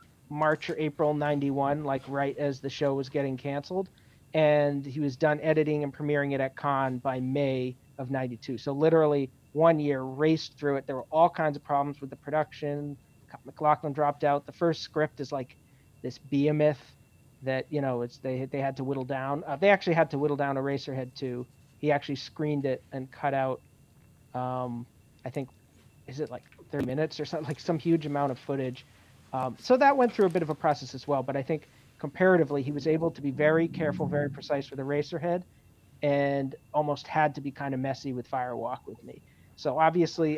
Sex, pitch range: male, 135-150 Hz